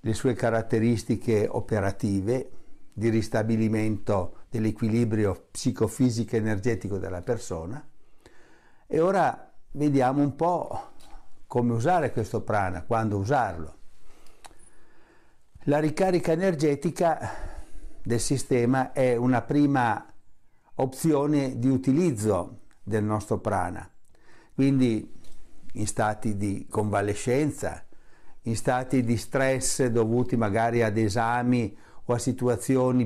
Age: 60-79